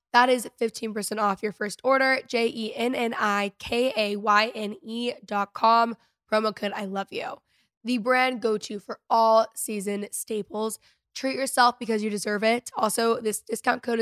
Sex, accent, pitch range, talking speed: female, American, 220-275 Hz, 165 wpm